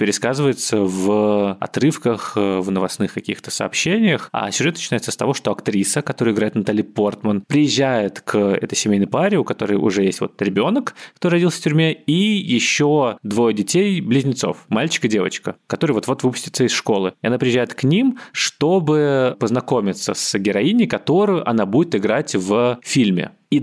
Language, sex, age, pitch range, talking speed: Russian, male, 20-39, 105-150 Hz, 155 wpm